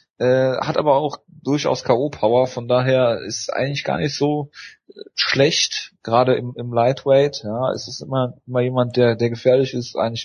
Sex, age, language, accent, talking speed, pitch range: male, 30-49, German, German, 175 wpm, 110-130 Hz